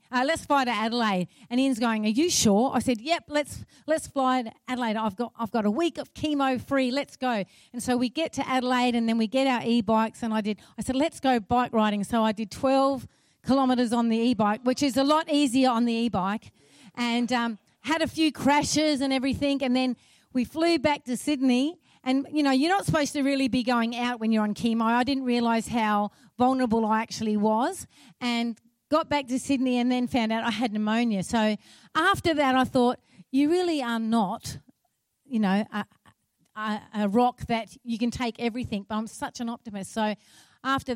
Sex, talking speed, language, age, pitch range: female, 210 wpm, English, 40-59, 210-260 Hz